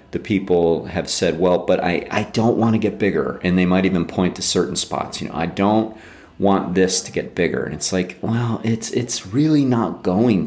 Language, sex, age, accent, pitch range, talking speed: English, male, 40-59, American, 80-105 Hz, 225 wpm